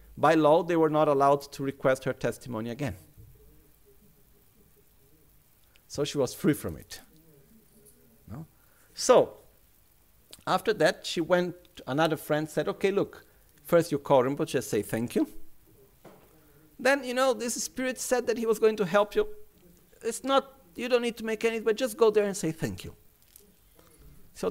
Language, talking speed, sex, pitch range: Italian, 160 wpm, male, 120-200 Hz